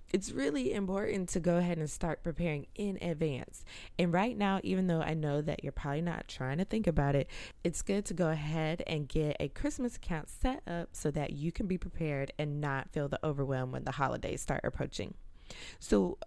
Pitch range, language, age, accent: 145-180 Hz, English, 20-39, American